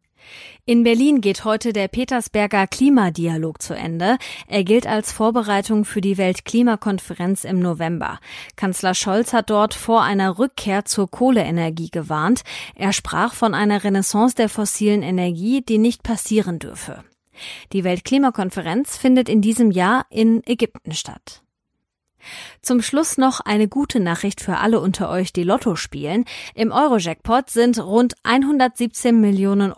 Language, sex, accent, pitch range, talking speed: German, female, German, 190-235 Hz, 135 wpm